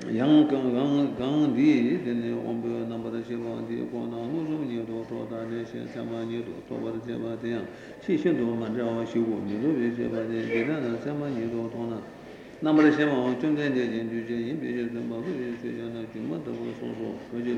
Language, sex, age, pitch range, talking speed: Italian, male, 60-79, 115-130 Hz, 100 wpm